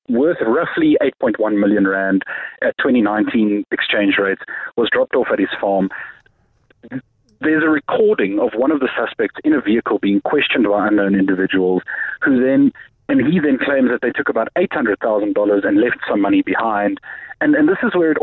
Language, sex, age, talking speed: English, male, 30-49, 180 wpm